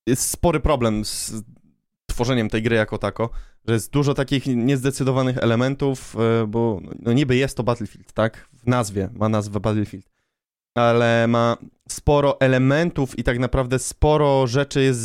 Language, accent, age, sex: Polish, native, 20-39, male